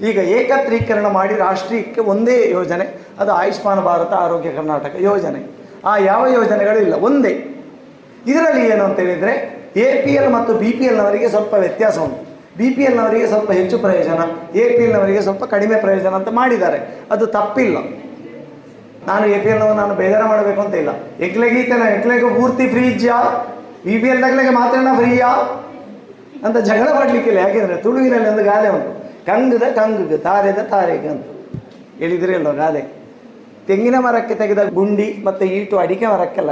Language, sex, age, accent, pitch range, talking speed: Kannada, male, 30-49, native, 200-250 Hz, 140 wpm